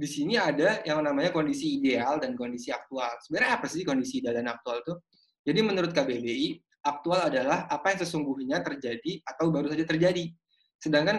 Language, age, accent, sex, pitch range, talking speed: Indonesian, 20-39, native, male, 145-180 Hz, 170 wpm